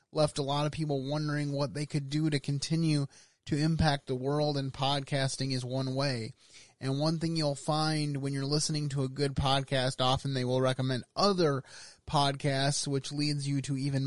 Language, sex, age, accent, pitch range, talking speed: English, male, 30-49, American, 135-155 Hz, 190 wpm